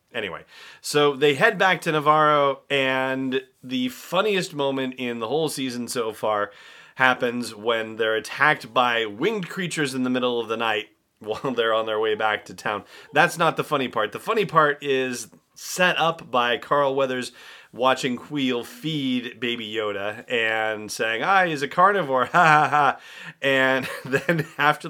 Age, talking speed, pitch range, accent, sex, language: 30-49, 170 wpm, 120-150 Hz, American, male, English